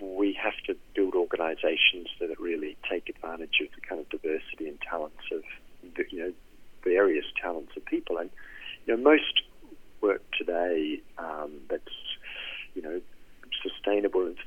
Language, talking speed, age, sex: English, 145 wpm, 40-59, male